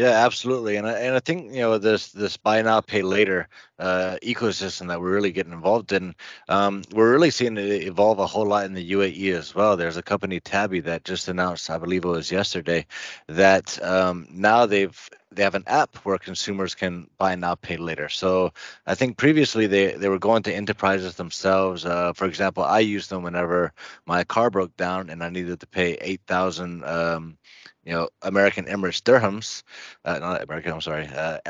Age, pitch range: 20-39, 90-100 Hz